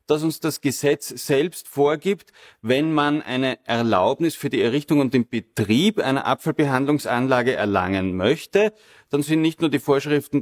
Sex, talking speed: male, 150 wpm